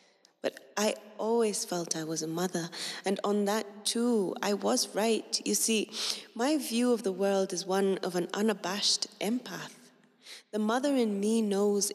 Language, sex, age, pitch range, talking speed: French, female, 20-39, 195-240 Hz, 165 wpm